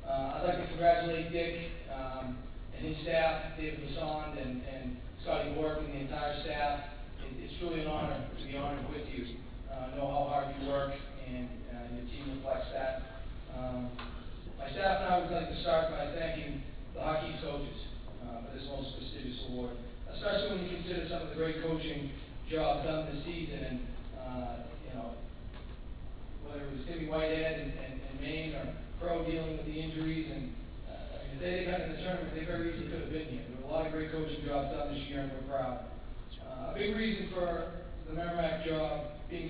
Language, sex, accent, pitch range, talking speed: English, male, American, 130-165 Hz, 200 wpm